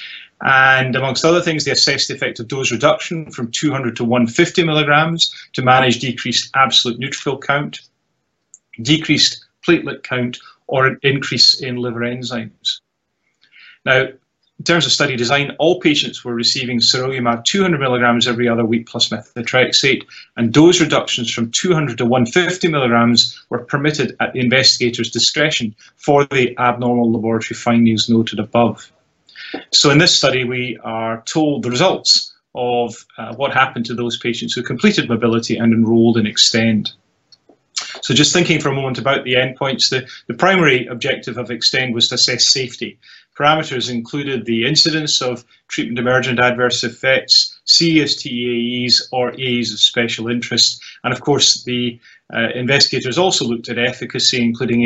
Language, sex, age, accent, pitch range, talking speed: English, male, 30-49, British, 120-135 Hz, 155 wpm